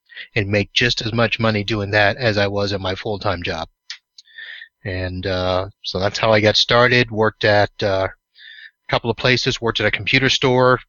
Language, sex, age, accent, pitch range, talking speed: English, male, 30-49, American, 100-120 Hz, 195 wpm